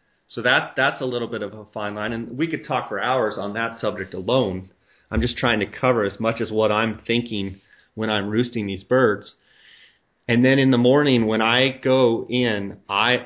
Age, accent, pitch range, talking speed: 30-49, American, 110-130 Hz, 210 wpm